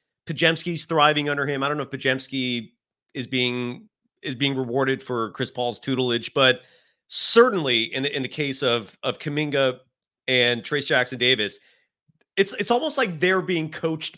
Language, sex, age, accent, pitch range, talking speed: English, male, 30-49, American, 120-155 Hz, 165 wpm